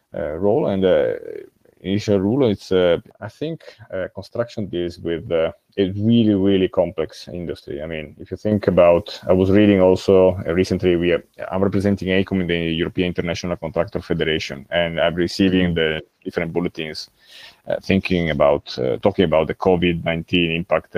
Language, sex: English, male